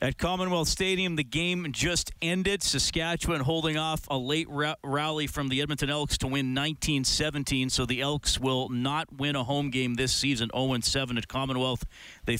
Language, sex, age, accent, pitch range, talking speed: English, male, 40-59, American, 125-155 Hz, 170 wpm